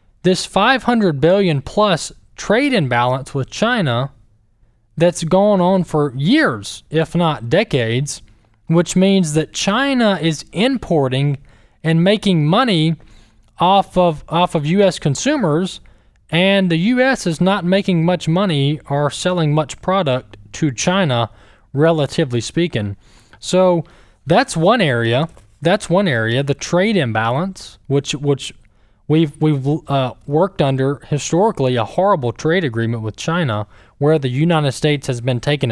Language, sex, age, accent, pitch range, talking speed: English, male, 20-39, American, 120-180 Hz, 130 wpm